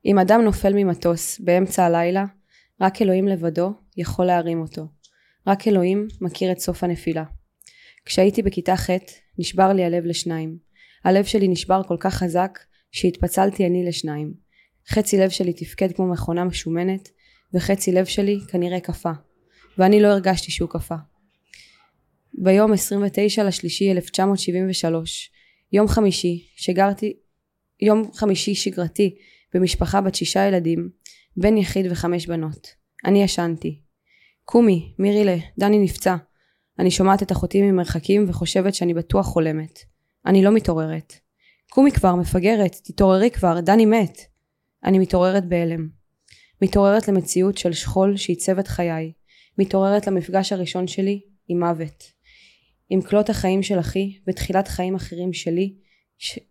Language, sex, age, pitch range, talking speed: Hebrew, female, 20-39, 175-195 Hz, 125 wpm